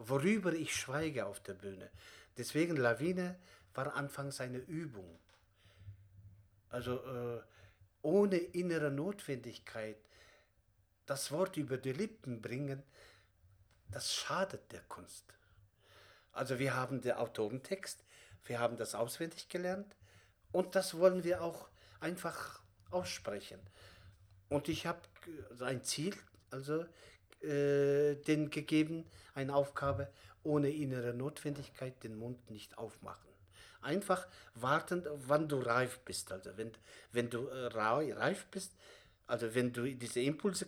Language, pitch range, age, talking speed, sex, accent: German, 110-160 Hz, 50-69, 115 wpm, male, German